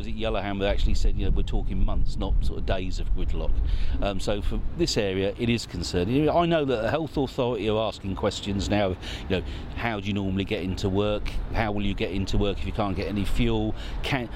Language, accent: English, British